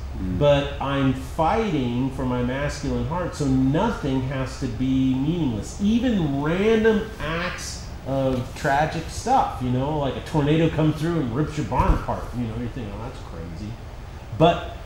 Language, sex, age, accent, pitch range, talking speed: English, male, 40-59, American, 125-170 Hz, 160 wpm